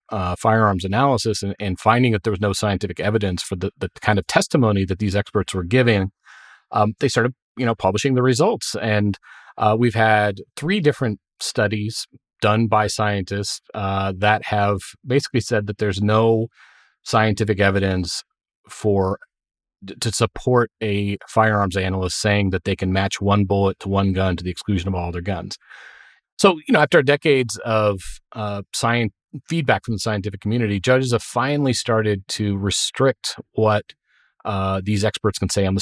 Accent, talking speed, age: American, 170 wpm, 30-49